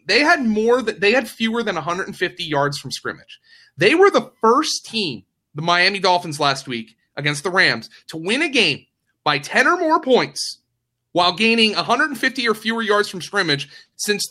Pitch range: 140-205 Hz